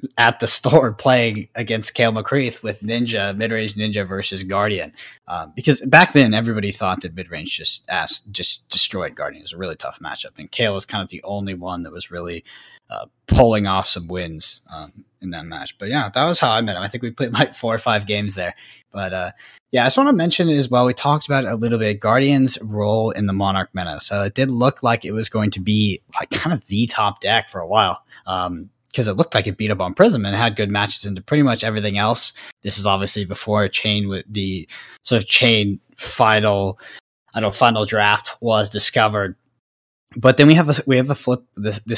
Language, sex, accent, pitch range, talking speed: English, male, American, 95-125 Hz, 230 wpm